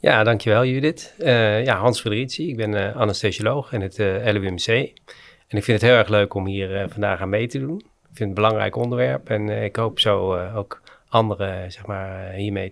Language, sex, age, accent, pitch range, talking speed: Dutch, male, 40-59, Dutch, 100-120 Hz, 210 wpm